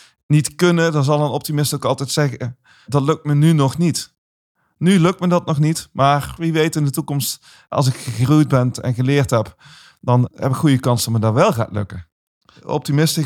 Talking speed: 210 wpm